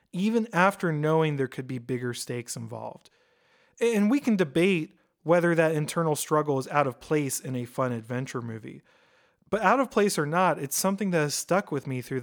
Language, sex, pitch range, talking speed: English, male, 130-180 Hz, 195 wpm